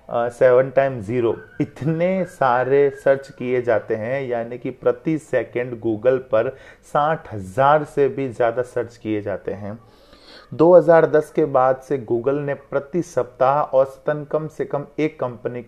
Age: 30-49